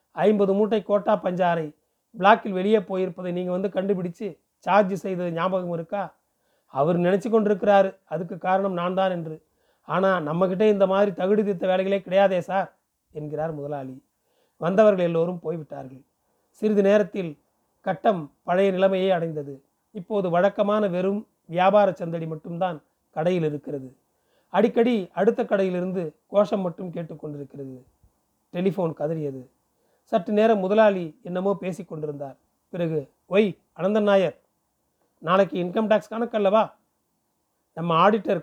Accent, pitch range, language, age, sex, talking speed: native, 165-200 Hz, Tamil, 30-49, male, 115 wpm